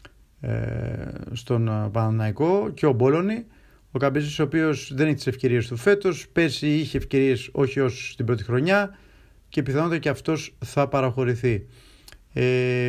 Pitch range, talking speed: 125-165 Hz, 135 wpm